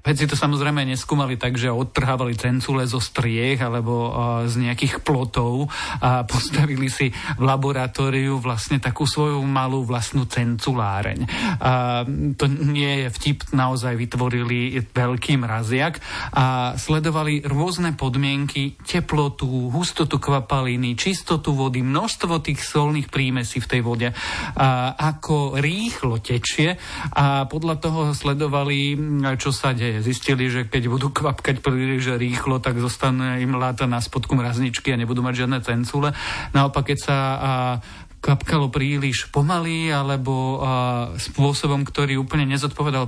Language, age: Slovak, 40-59